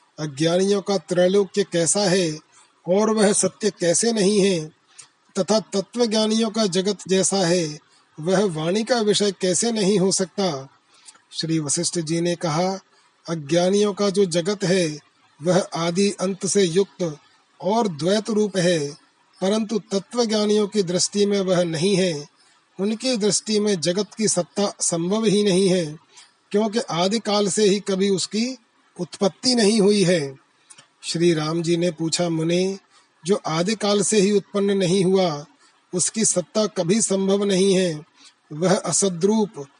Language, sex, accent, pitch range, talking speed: Hindi, male, native, 175-205 Hz, 145 wpm